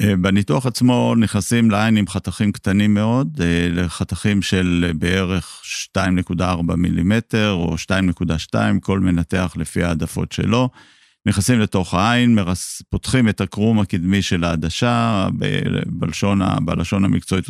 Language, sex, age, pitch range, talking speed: Hebrew, male, 50-69, 90-110 Hz, 110 wpm